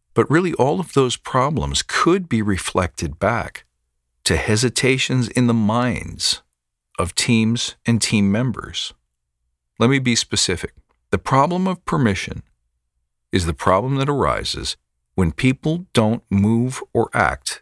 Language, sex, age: English, male, 50-69